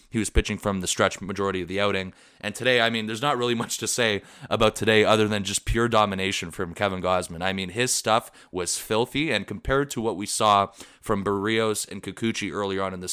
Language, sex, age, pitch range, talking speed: English, male, 20-39, 100-120 Hz, 230 wpm